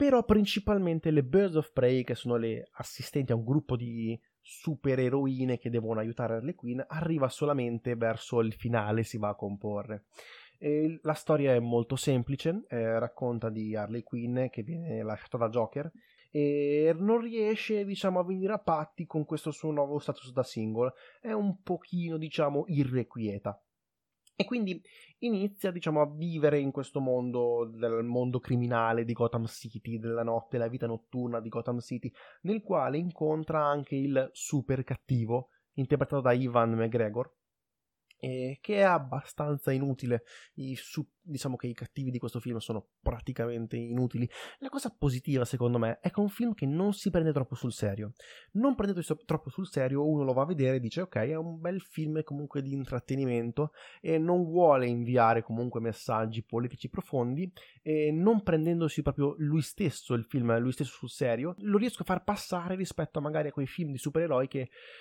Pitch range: 120-165 Hz